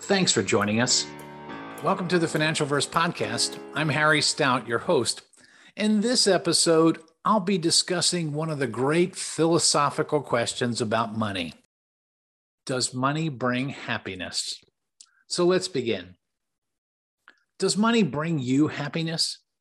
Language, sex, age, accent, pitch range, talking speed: English, male, 50-69, American, 125-175 Hz, 125 wpm